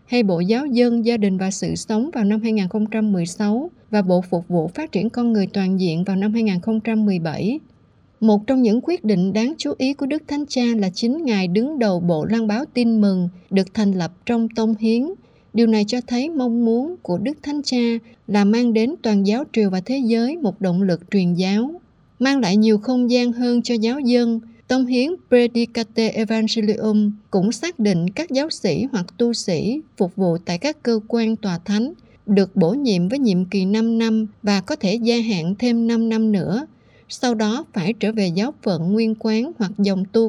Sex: female